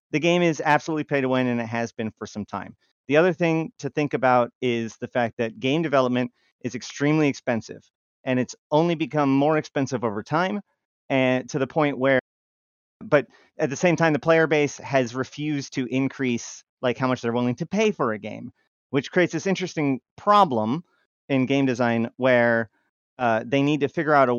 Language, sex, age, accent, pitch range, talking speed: English, male, 30-49, American, 125-160 Hz, 195 wpm